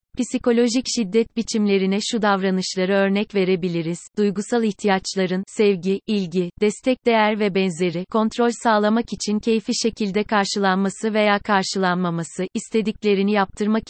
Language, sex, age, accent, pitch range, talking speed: Turkish, female, 30-49, native, 190-220 Hz, 110 wpm